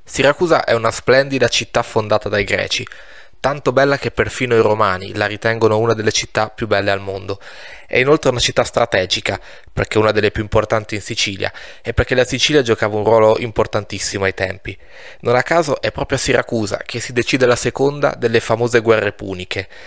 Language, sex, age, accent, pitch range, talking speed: Italian, male, 20-39, native, 105-125 Hz, 180 wpm